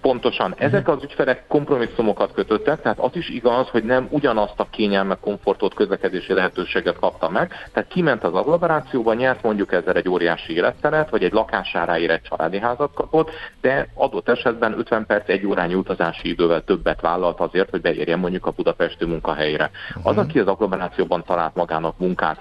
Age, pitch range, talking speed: 40-59, 90-130 Hz, 165 wpm